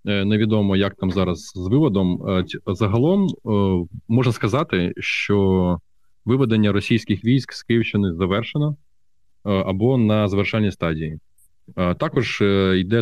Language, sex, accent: Ukrainian, male, native